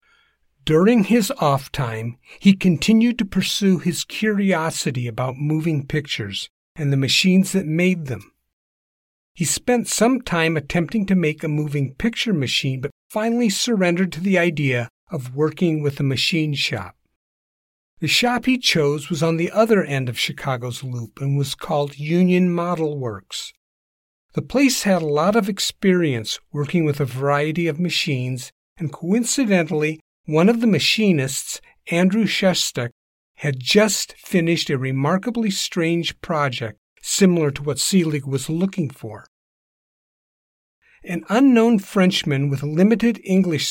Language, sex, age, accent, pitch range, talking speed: English, male, 50-69, American, 140-195 Hz, 140 wpm